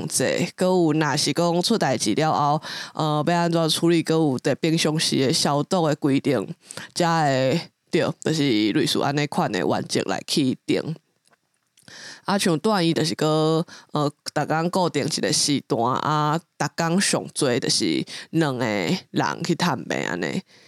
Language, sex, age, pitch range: English, female, 20-39, 150-175 Hz